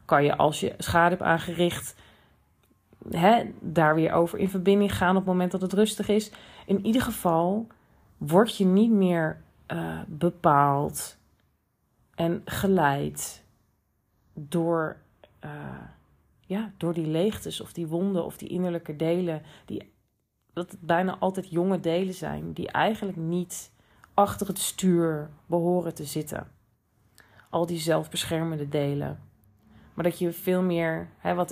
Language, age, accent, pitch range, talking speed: Dutch, 40-59, Dutch, 115-180 Hz, 130 wpm